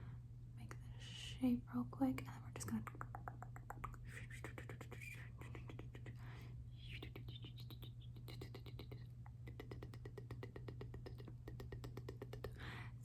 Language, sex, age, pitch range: English, female, 30-49, 120-185 Hz